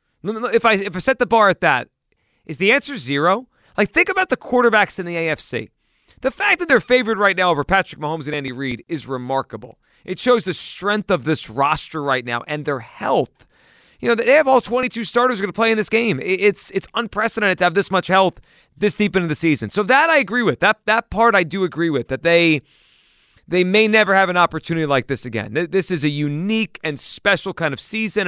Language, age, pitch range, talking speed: English, 30-49, 145-205 Hz, 225 wpm